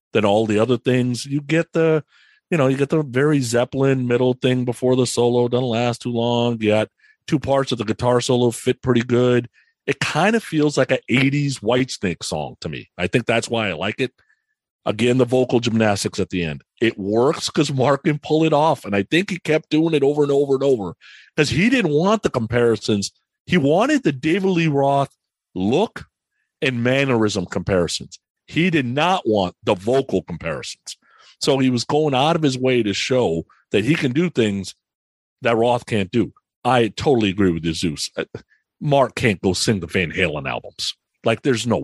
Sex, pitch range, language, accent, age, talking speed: male, 115-150 Hz, English, American, 40-59, 200 wpm